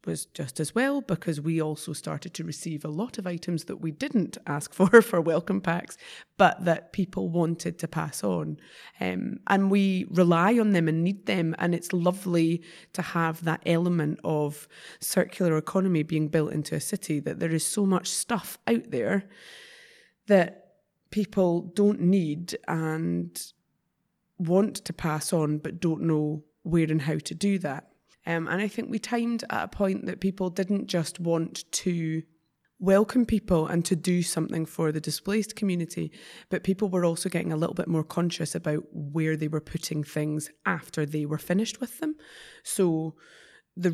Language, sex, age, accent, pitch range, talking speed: English, female, 20-39, British, 160-195 Hz, 175 wpm